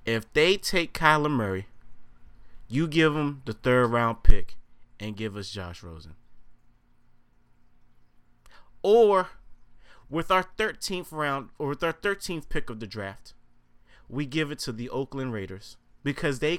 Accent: American